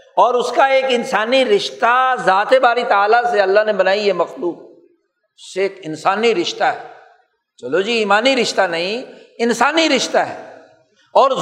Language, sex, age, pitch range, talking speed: Urdu, male, 60-79, 190-270 Hz, 150 wpm